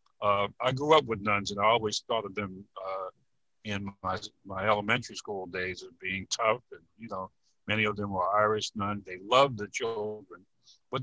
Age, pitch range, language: 50-69, 100-125 Hz, English